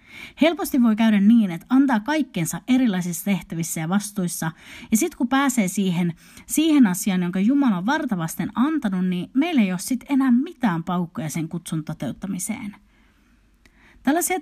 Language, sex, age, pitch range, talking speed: Finnish, female, 30-49, 180-255 Hz, 140 wpm